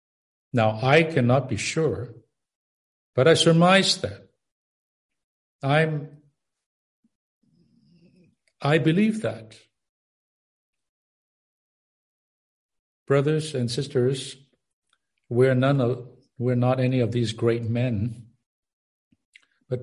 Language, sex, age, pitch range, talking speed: English, male, 60-79, 115-140 Hz, 85 wpm